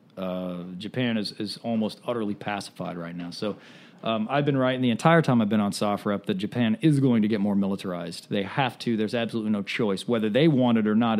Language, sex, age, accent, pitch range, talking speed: English, male, 40-59, American, 105-135 Hz, 225 wpm